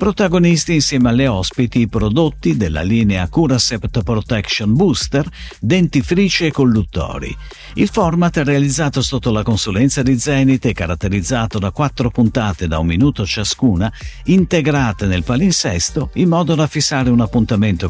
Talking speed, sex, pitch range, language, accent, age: 135 wpm, male, 100-150 Hz, Italian, native, 50-69